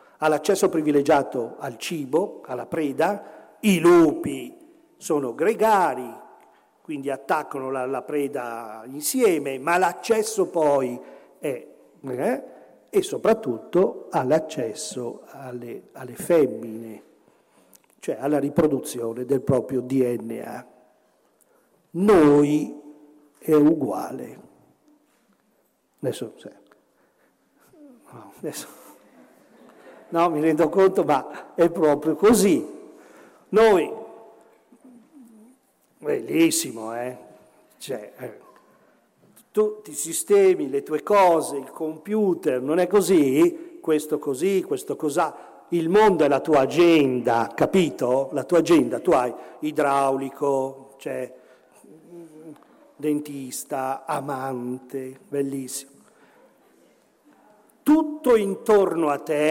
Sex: male